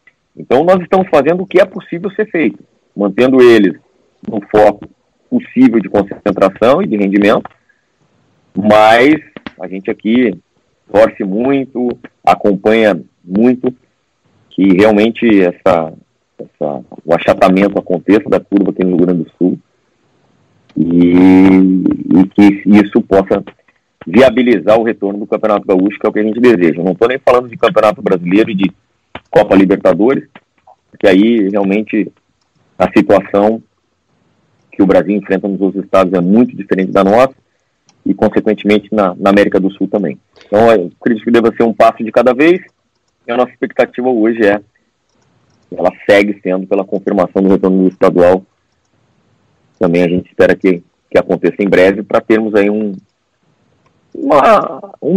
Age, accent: 40-59, Brazilian